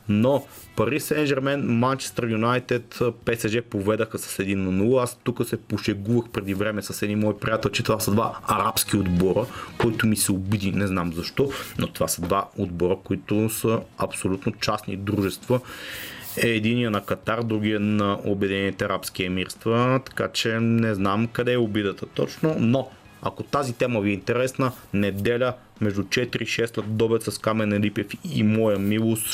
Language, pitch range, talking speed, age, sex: Bulgarian, 100-120 Hz, 165 wpm, 30-49, male